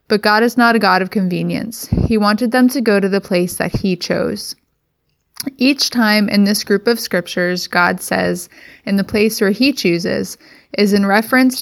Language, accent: English, American